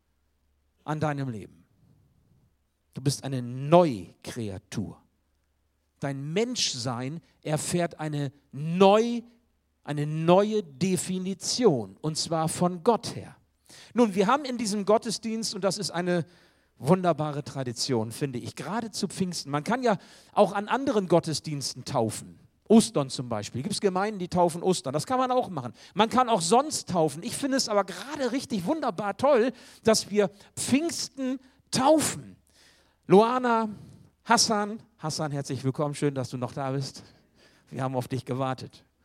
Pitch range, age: 130-205 Hz, 50-69